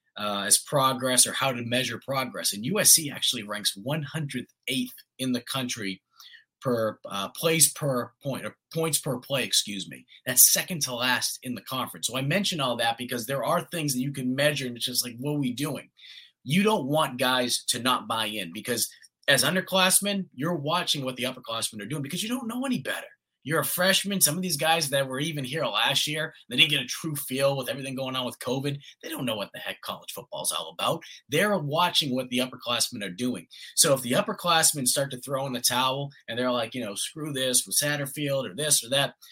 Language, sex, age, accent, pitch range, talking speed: English, male, 30-49, American, 125-155 Hz, 220 wpm